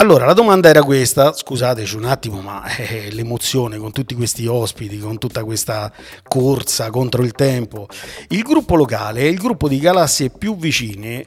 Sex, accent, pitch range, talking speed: male, native, 115-150 Hz, 170 wpm